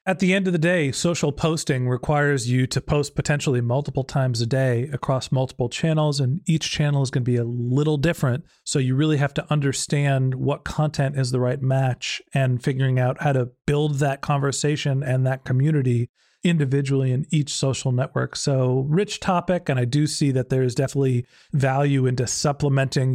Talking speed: 185 wpm